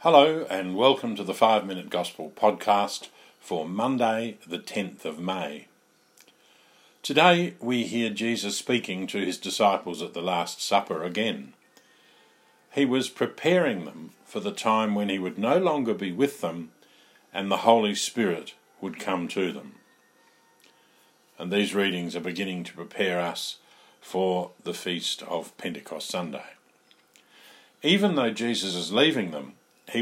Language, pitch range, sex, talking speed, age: English, 95-130 Hz, male, 140 wpm, 50-69